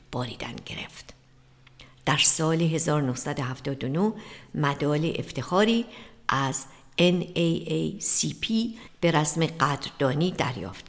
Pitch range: 135-190 Hz